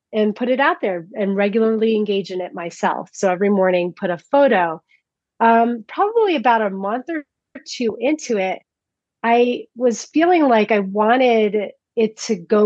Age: 30-49